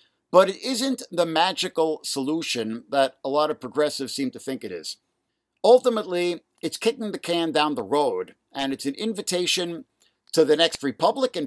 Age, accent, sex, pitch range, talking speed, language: 50-69, American, male, 135-195 Hz, 165 wpm, English